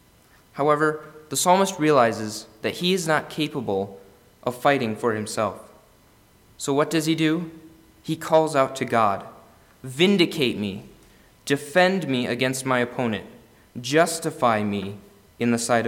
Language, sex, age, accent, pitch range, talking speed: English, male, 20-39, American, 115-150 Hz, 130 wpm